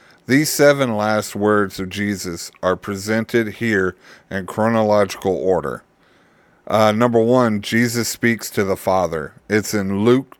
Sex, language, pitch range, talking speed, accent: male, English, 100-125 Hz, 135 wpm, American